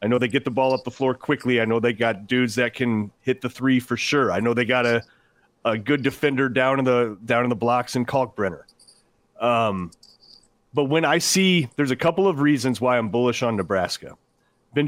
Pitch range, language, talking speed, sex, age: 115-150 Hz, English, 220 wpm, male, 30-49